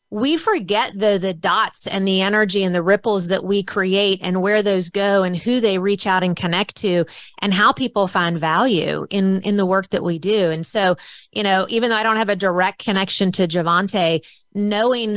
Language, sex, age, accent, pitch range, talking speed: English, female, 30-49, American, 185-230 Hz, 210 wpm